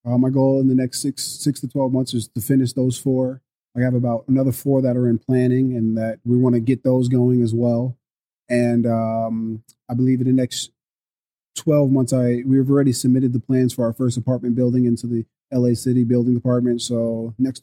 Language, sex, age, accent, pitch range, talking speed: English, male, 30-49, American, 115-130 Hz, 215 wpm